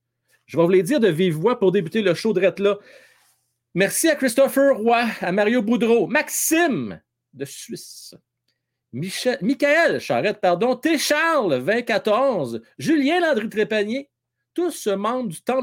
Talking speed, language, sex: 135 wpm, French, male